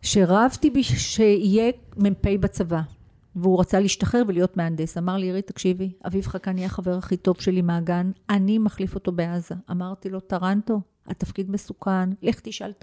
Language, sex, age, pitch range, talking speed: Hebrew, female, 50-69, 155-195 Hz, 160 wpm